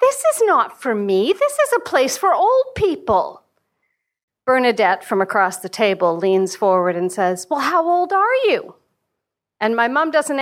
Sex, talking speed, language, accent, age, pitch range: female, 175 wpm, English, American, 50-69, 190-295 Hz